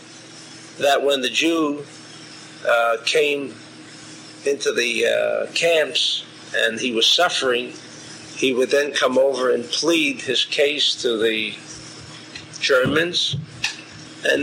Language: English